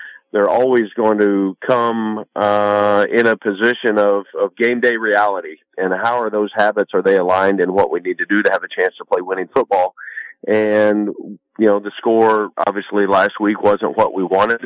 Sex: male